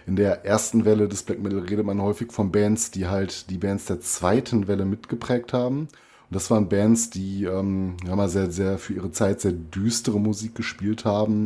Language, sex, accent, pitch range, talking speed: German, male, German, 90-105 Hz, 200 wpm